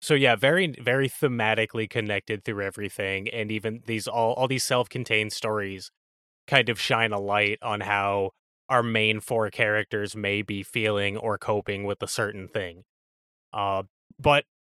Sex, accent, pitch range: male, American, 105-140 Hz